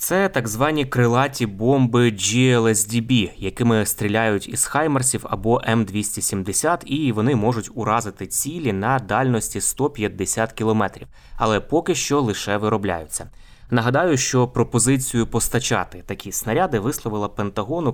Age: 20-39